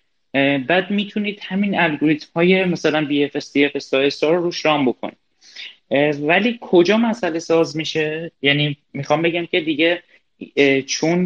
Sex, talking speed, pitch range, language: male, 130 wpm, 115-155 Hz, Persian